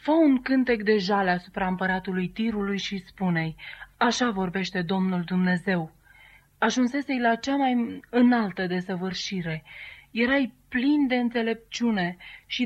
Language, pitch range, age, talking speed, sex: Romanian, 185-235 Hz, 30-49, 120 wpm, female